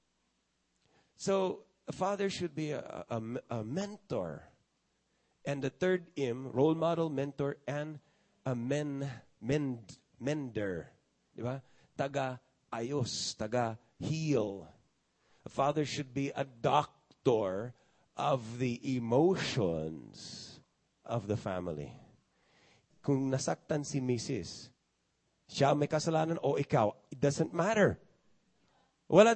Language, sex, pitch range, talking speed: English, male, 125-185 Hz, 105 wpm